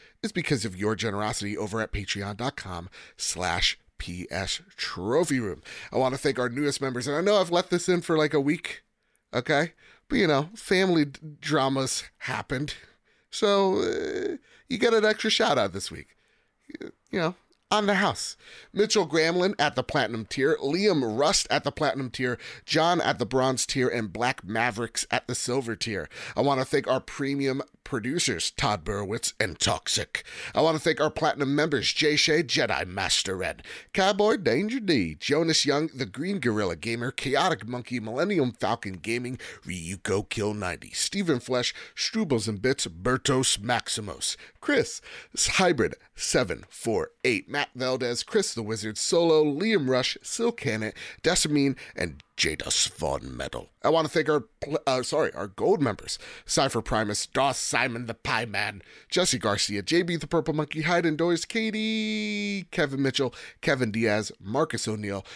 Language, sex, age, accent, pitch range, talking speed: English, male, 30-49, American, 115-170 Hz, 155 wpm